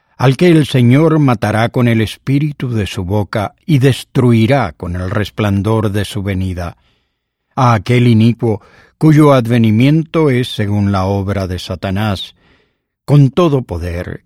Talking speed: 140 wpm